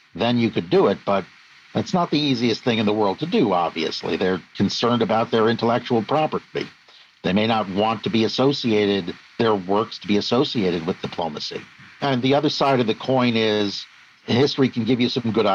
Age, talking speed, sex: 50-69, 195 wpm, male